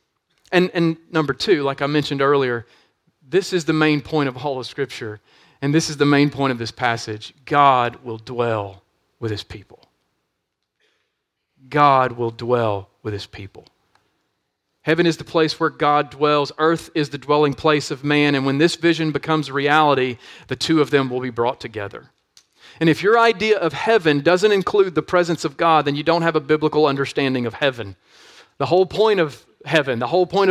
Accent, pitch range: American, 135-175 Hz